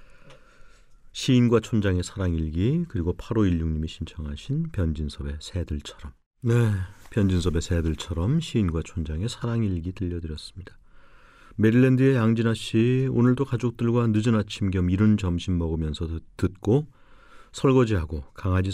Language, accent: Korean, native